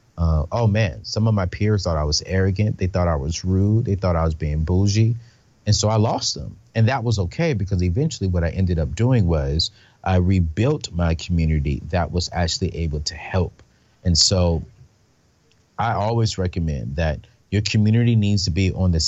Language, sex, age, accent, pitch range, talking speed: English, male, 30-49, American, 85-110 Hz, 195 wpm